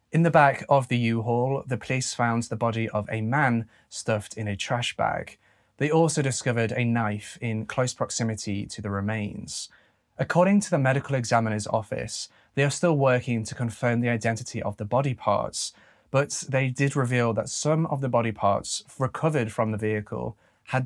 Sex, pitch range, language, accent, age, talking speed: male, 110-135 Hz, English, British, 20-39, 180 wpm